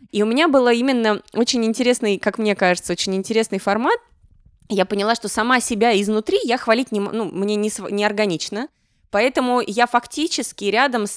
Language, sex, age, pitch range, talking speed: Russian, female, 20-39, 200-250 Hz, 165 wpm